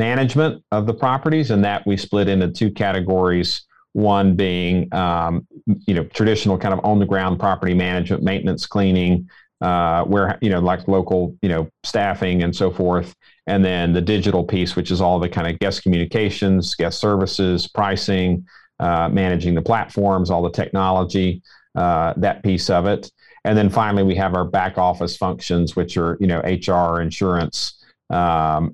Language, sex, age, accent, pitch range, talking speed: English, male, 40-59, American, 90-105 Hz, 170 wpm